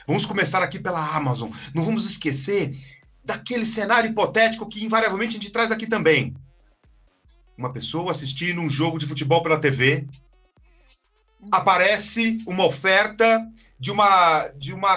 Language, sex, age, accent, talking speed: Portuguese, male, 40-59, Brazilian, 130 wpm